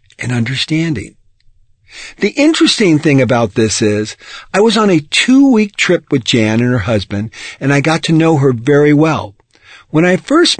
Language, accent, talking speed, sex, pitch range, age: English, American, 170 wpm, male, 110-170 Hz, 50-69